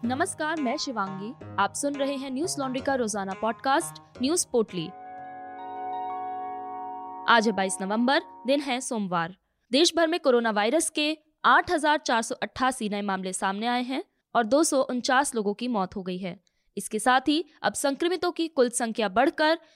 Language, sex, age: Hindi, female, 20-39